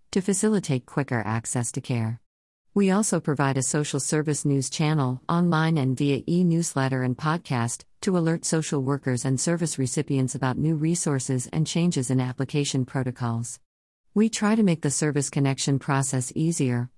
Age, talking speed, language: 50-69, 155 wpm, English